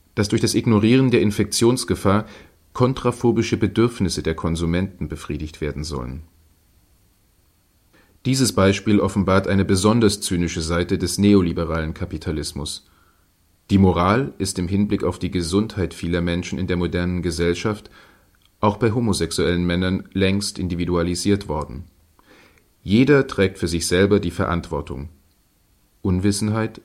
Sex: male